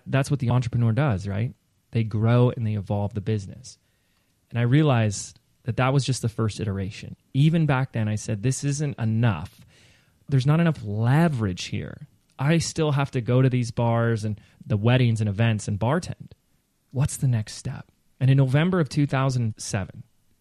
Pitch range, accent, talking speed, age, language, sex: 110-135 Hz, American, 175 wpm, 30-49, English, male